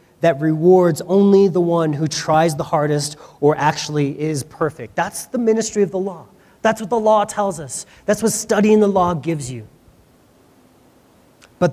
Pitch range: 160-210 Hz